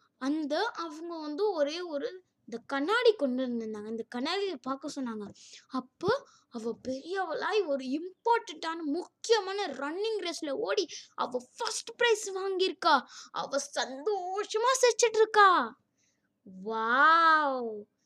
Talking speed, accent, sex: 55 wpm, native, female